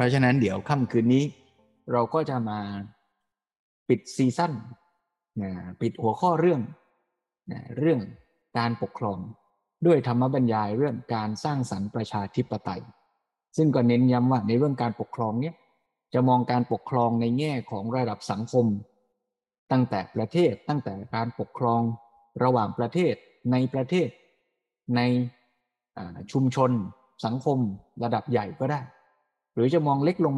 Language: Thai